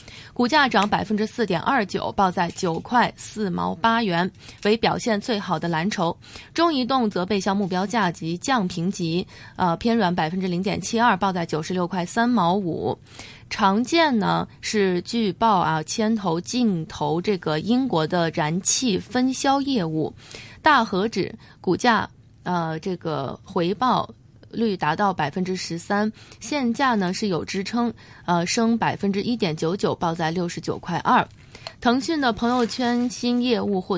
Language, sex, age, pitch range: Chinese, female, 20-39, 175-230 Hz